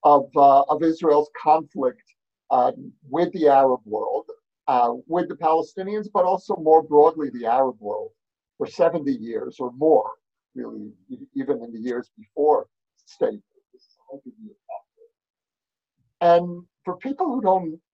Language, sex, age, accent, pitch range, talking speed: English, male, 50-69, American, 145-225 Hz, 130 wpm